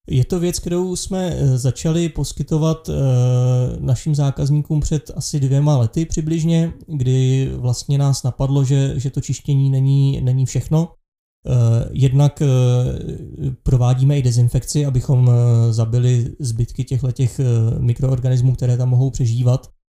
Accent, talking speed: native, 110 wpm